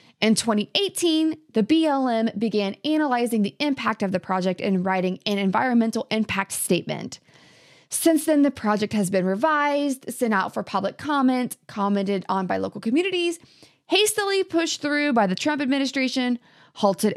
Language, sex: English, female